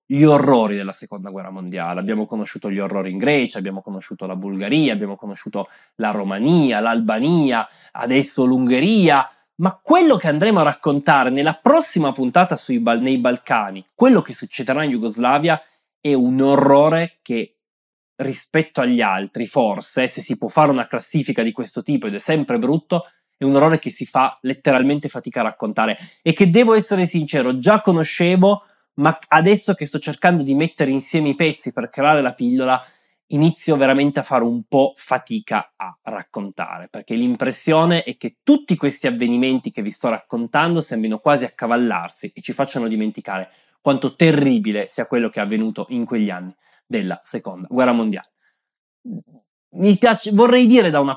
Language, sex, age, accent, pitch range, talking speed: Italian, male, 20-39, native, 120-165 Hz, 165 wpm